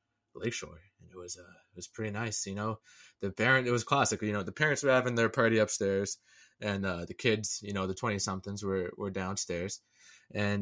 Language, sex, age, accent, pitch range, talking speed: English, male, 20-39, American, 95-115 Hz, 210 wpm